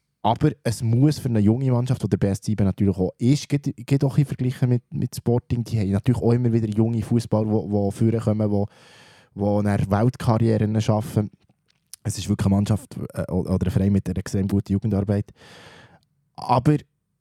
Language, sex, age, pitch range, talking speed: German, male, 20-39, 100-125 Hz, 180 wpm